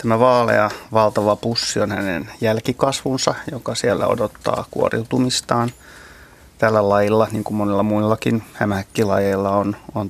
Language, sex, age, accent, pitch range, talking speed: Finnish, male, 30-49, native, 100-115 Hz, 120 wpm